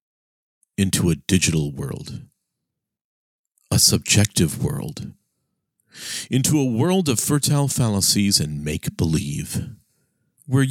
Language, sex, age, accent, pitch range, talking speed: English, male, 50-69, American, 95-155 Hz, 90 wpm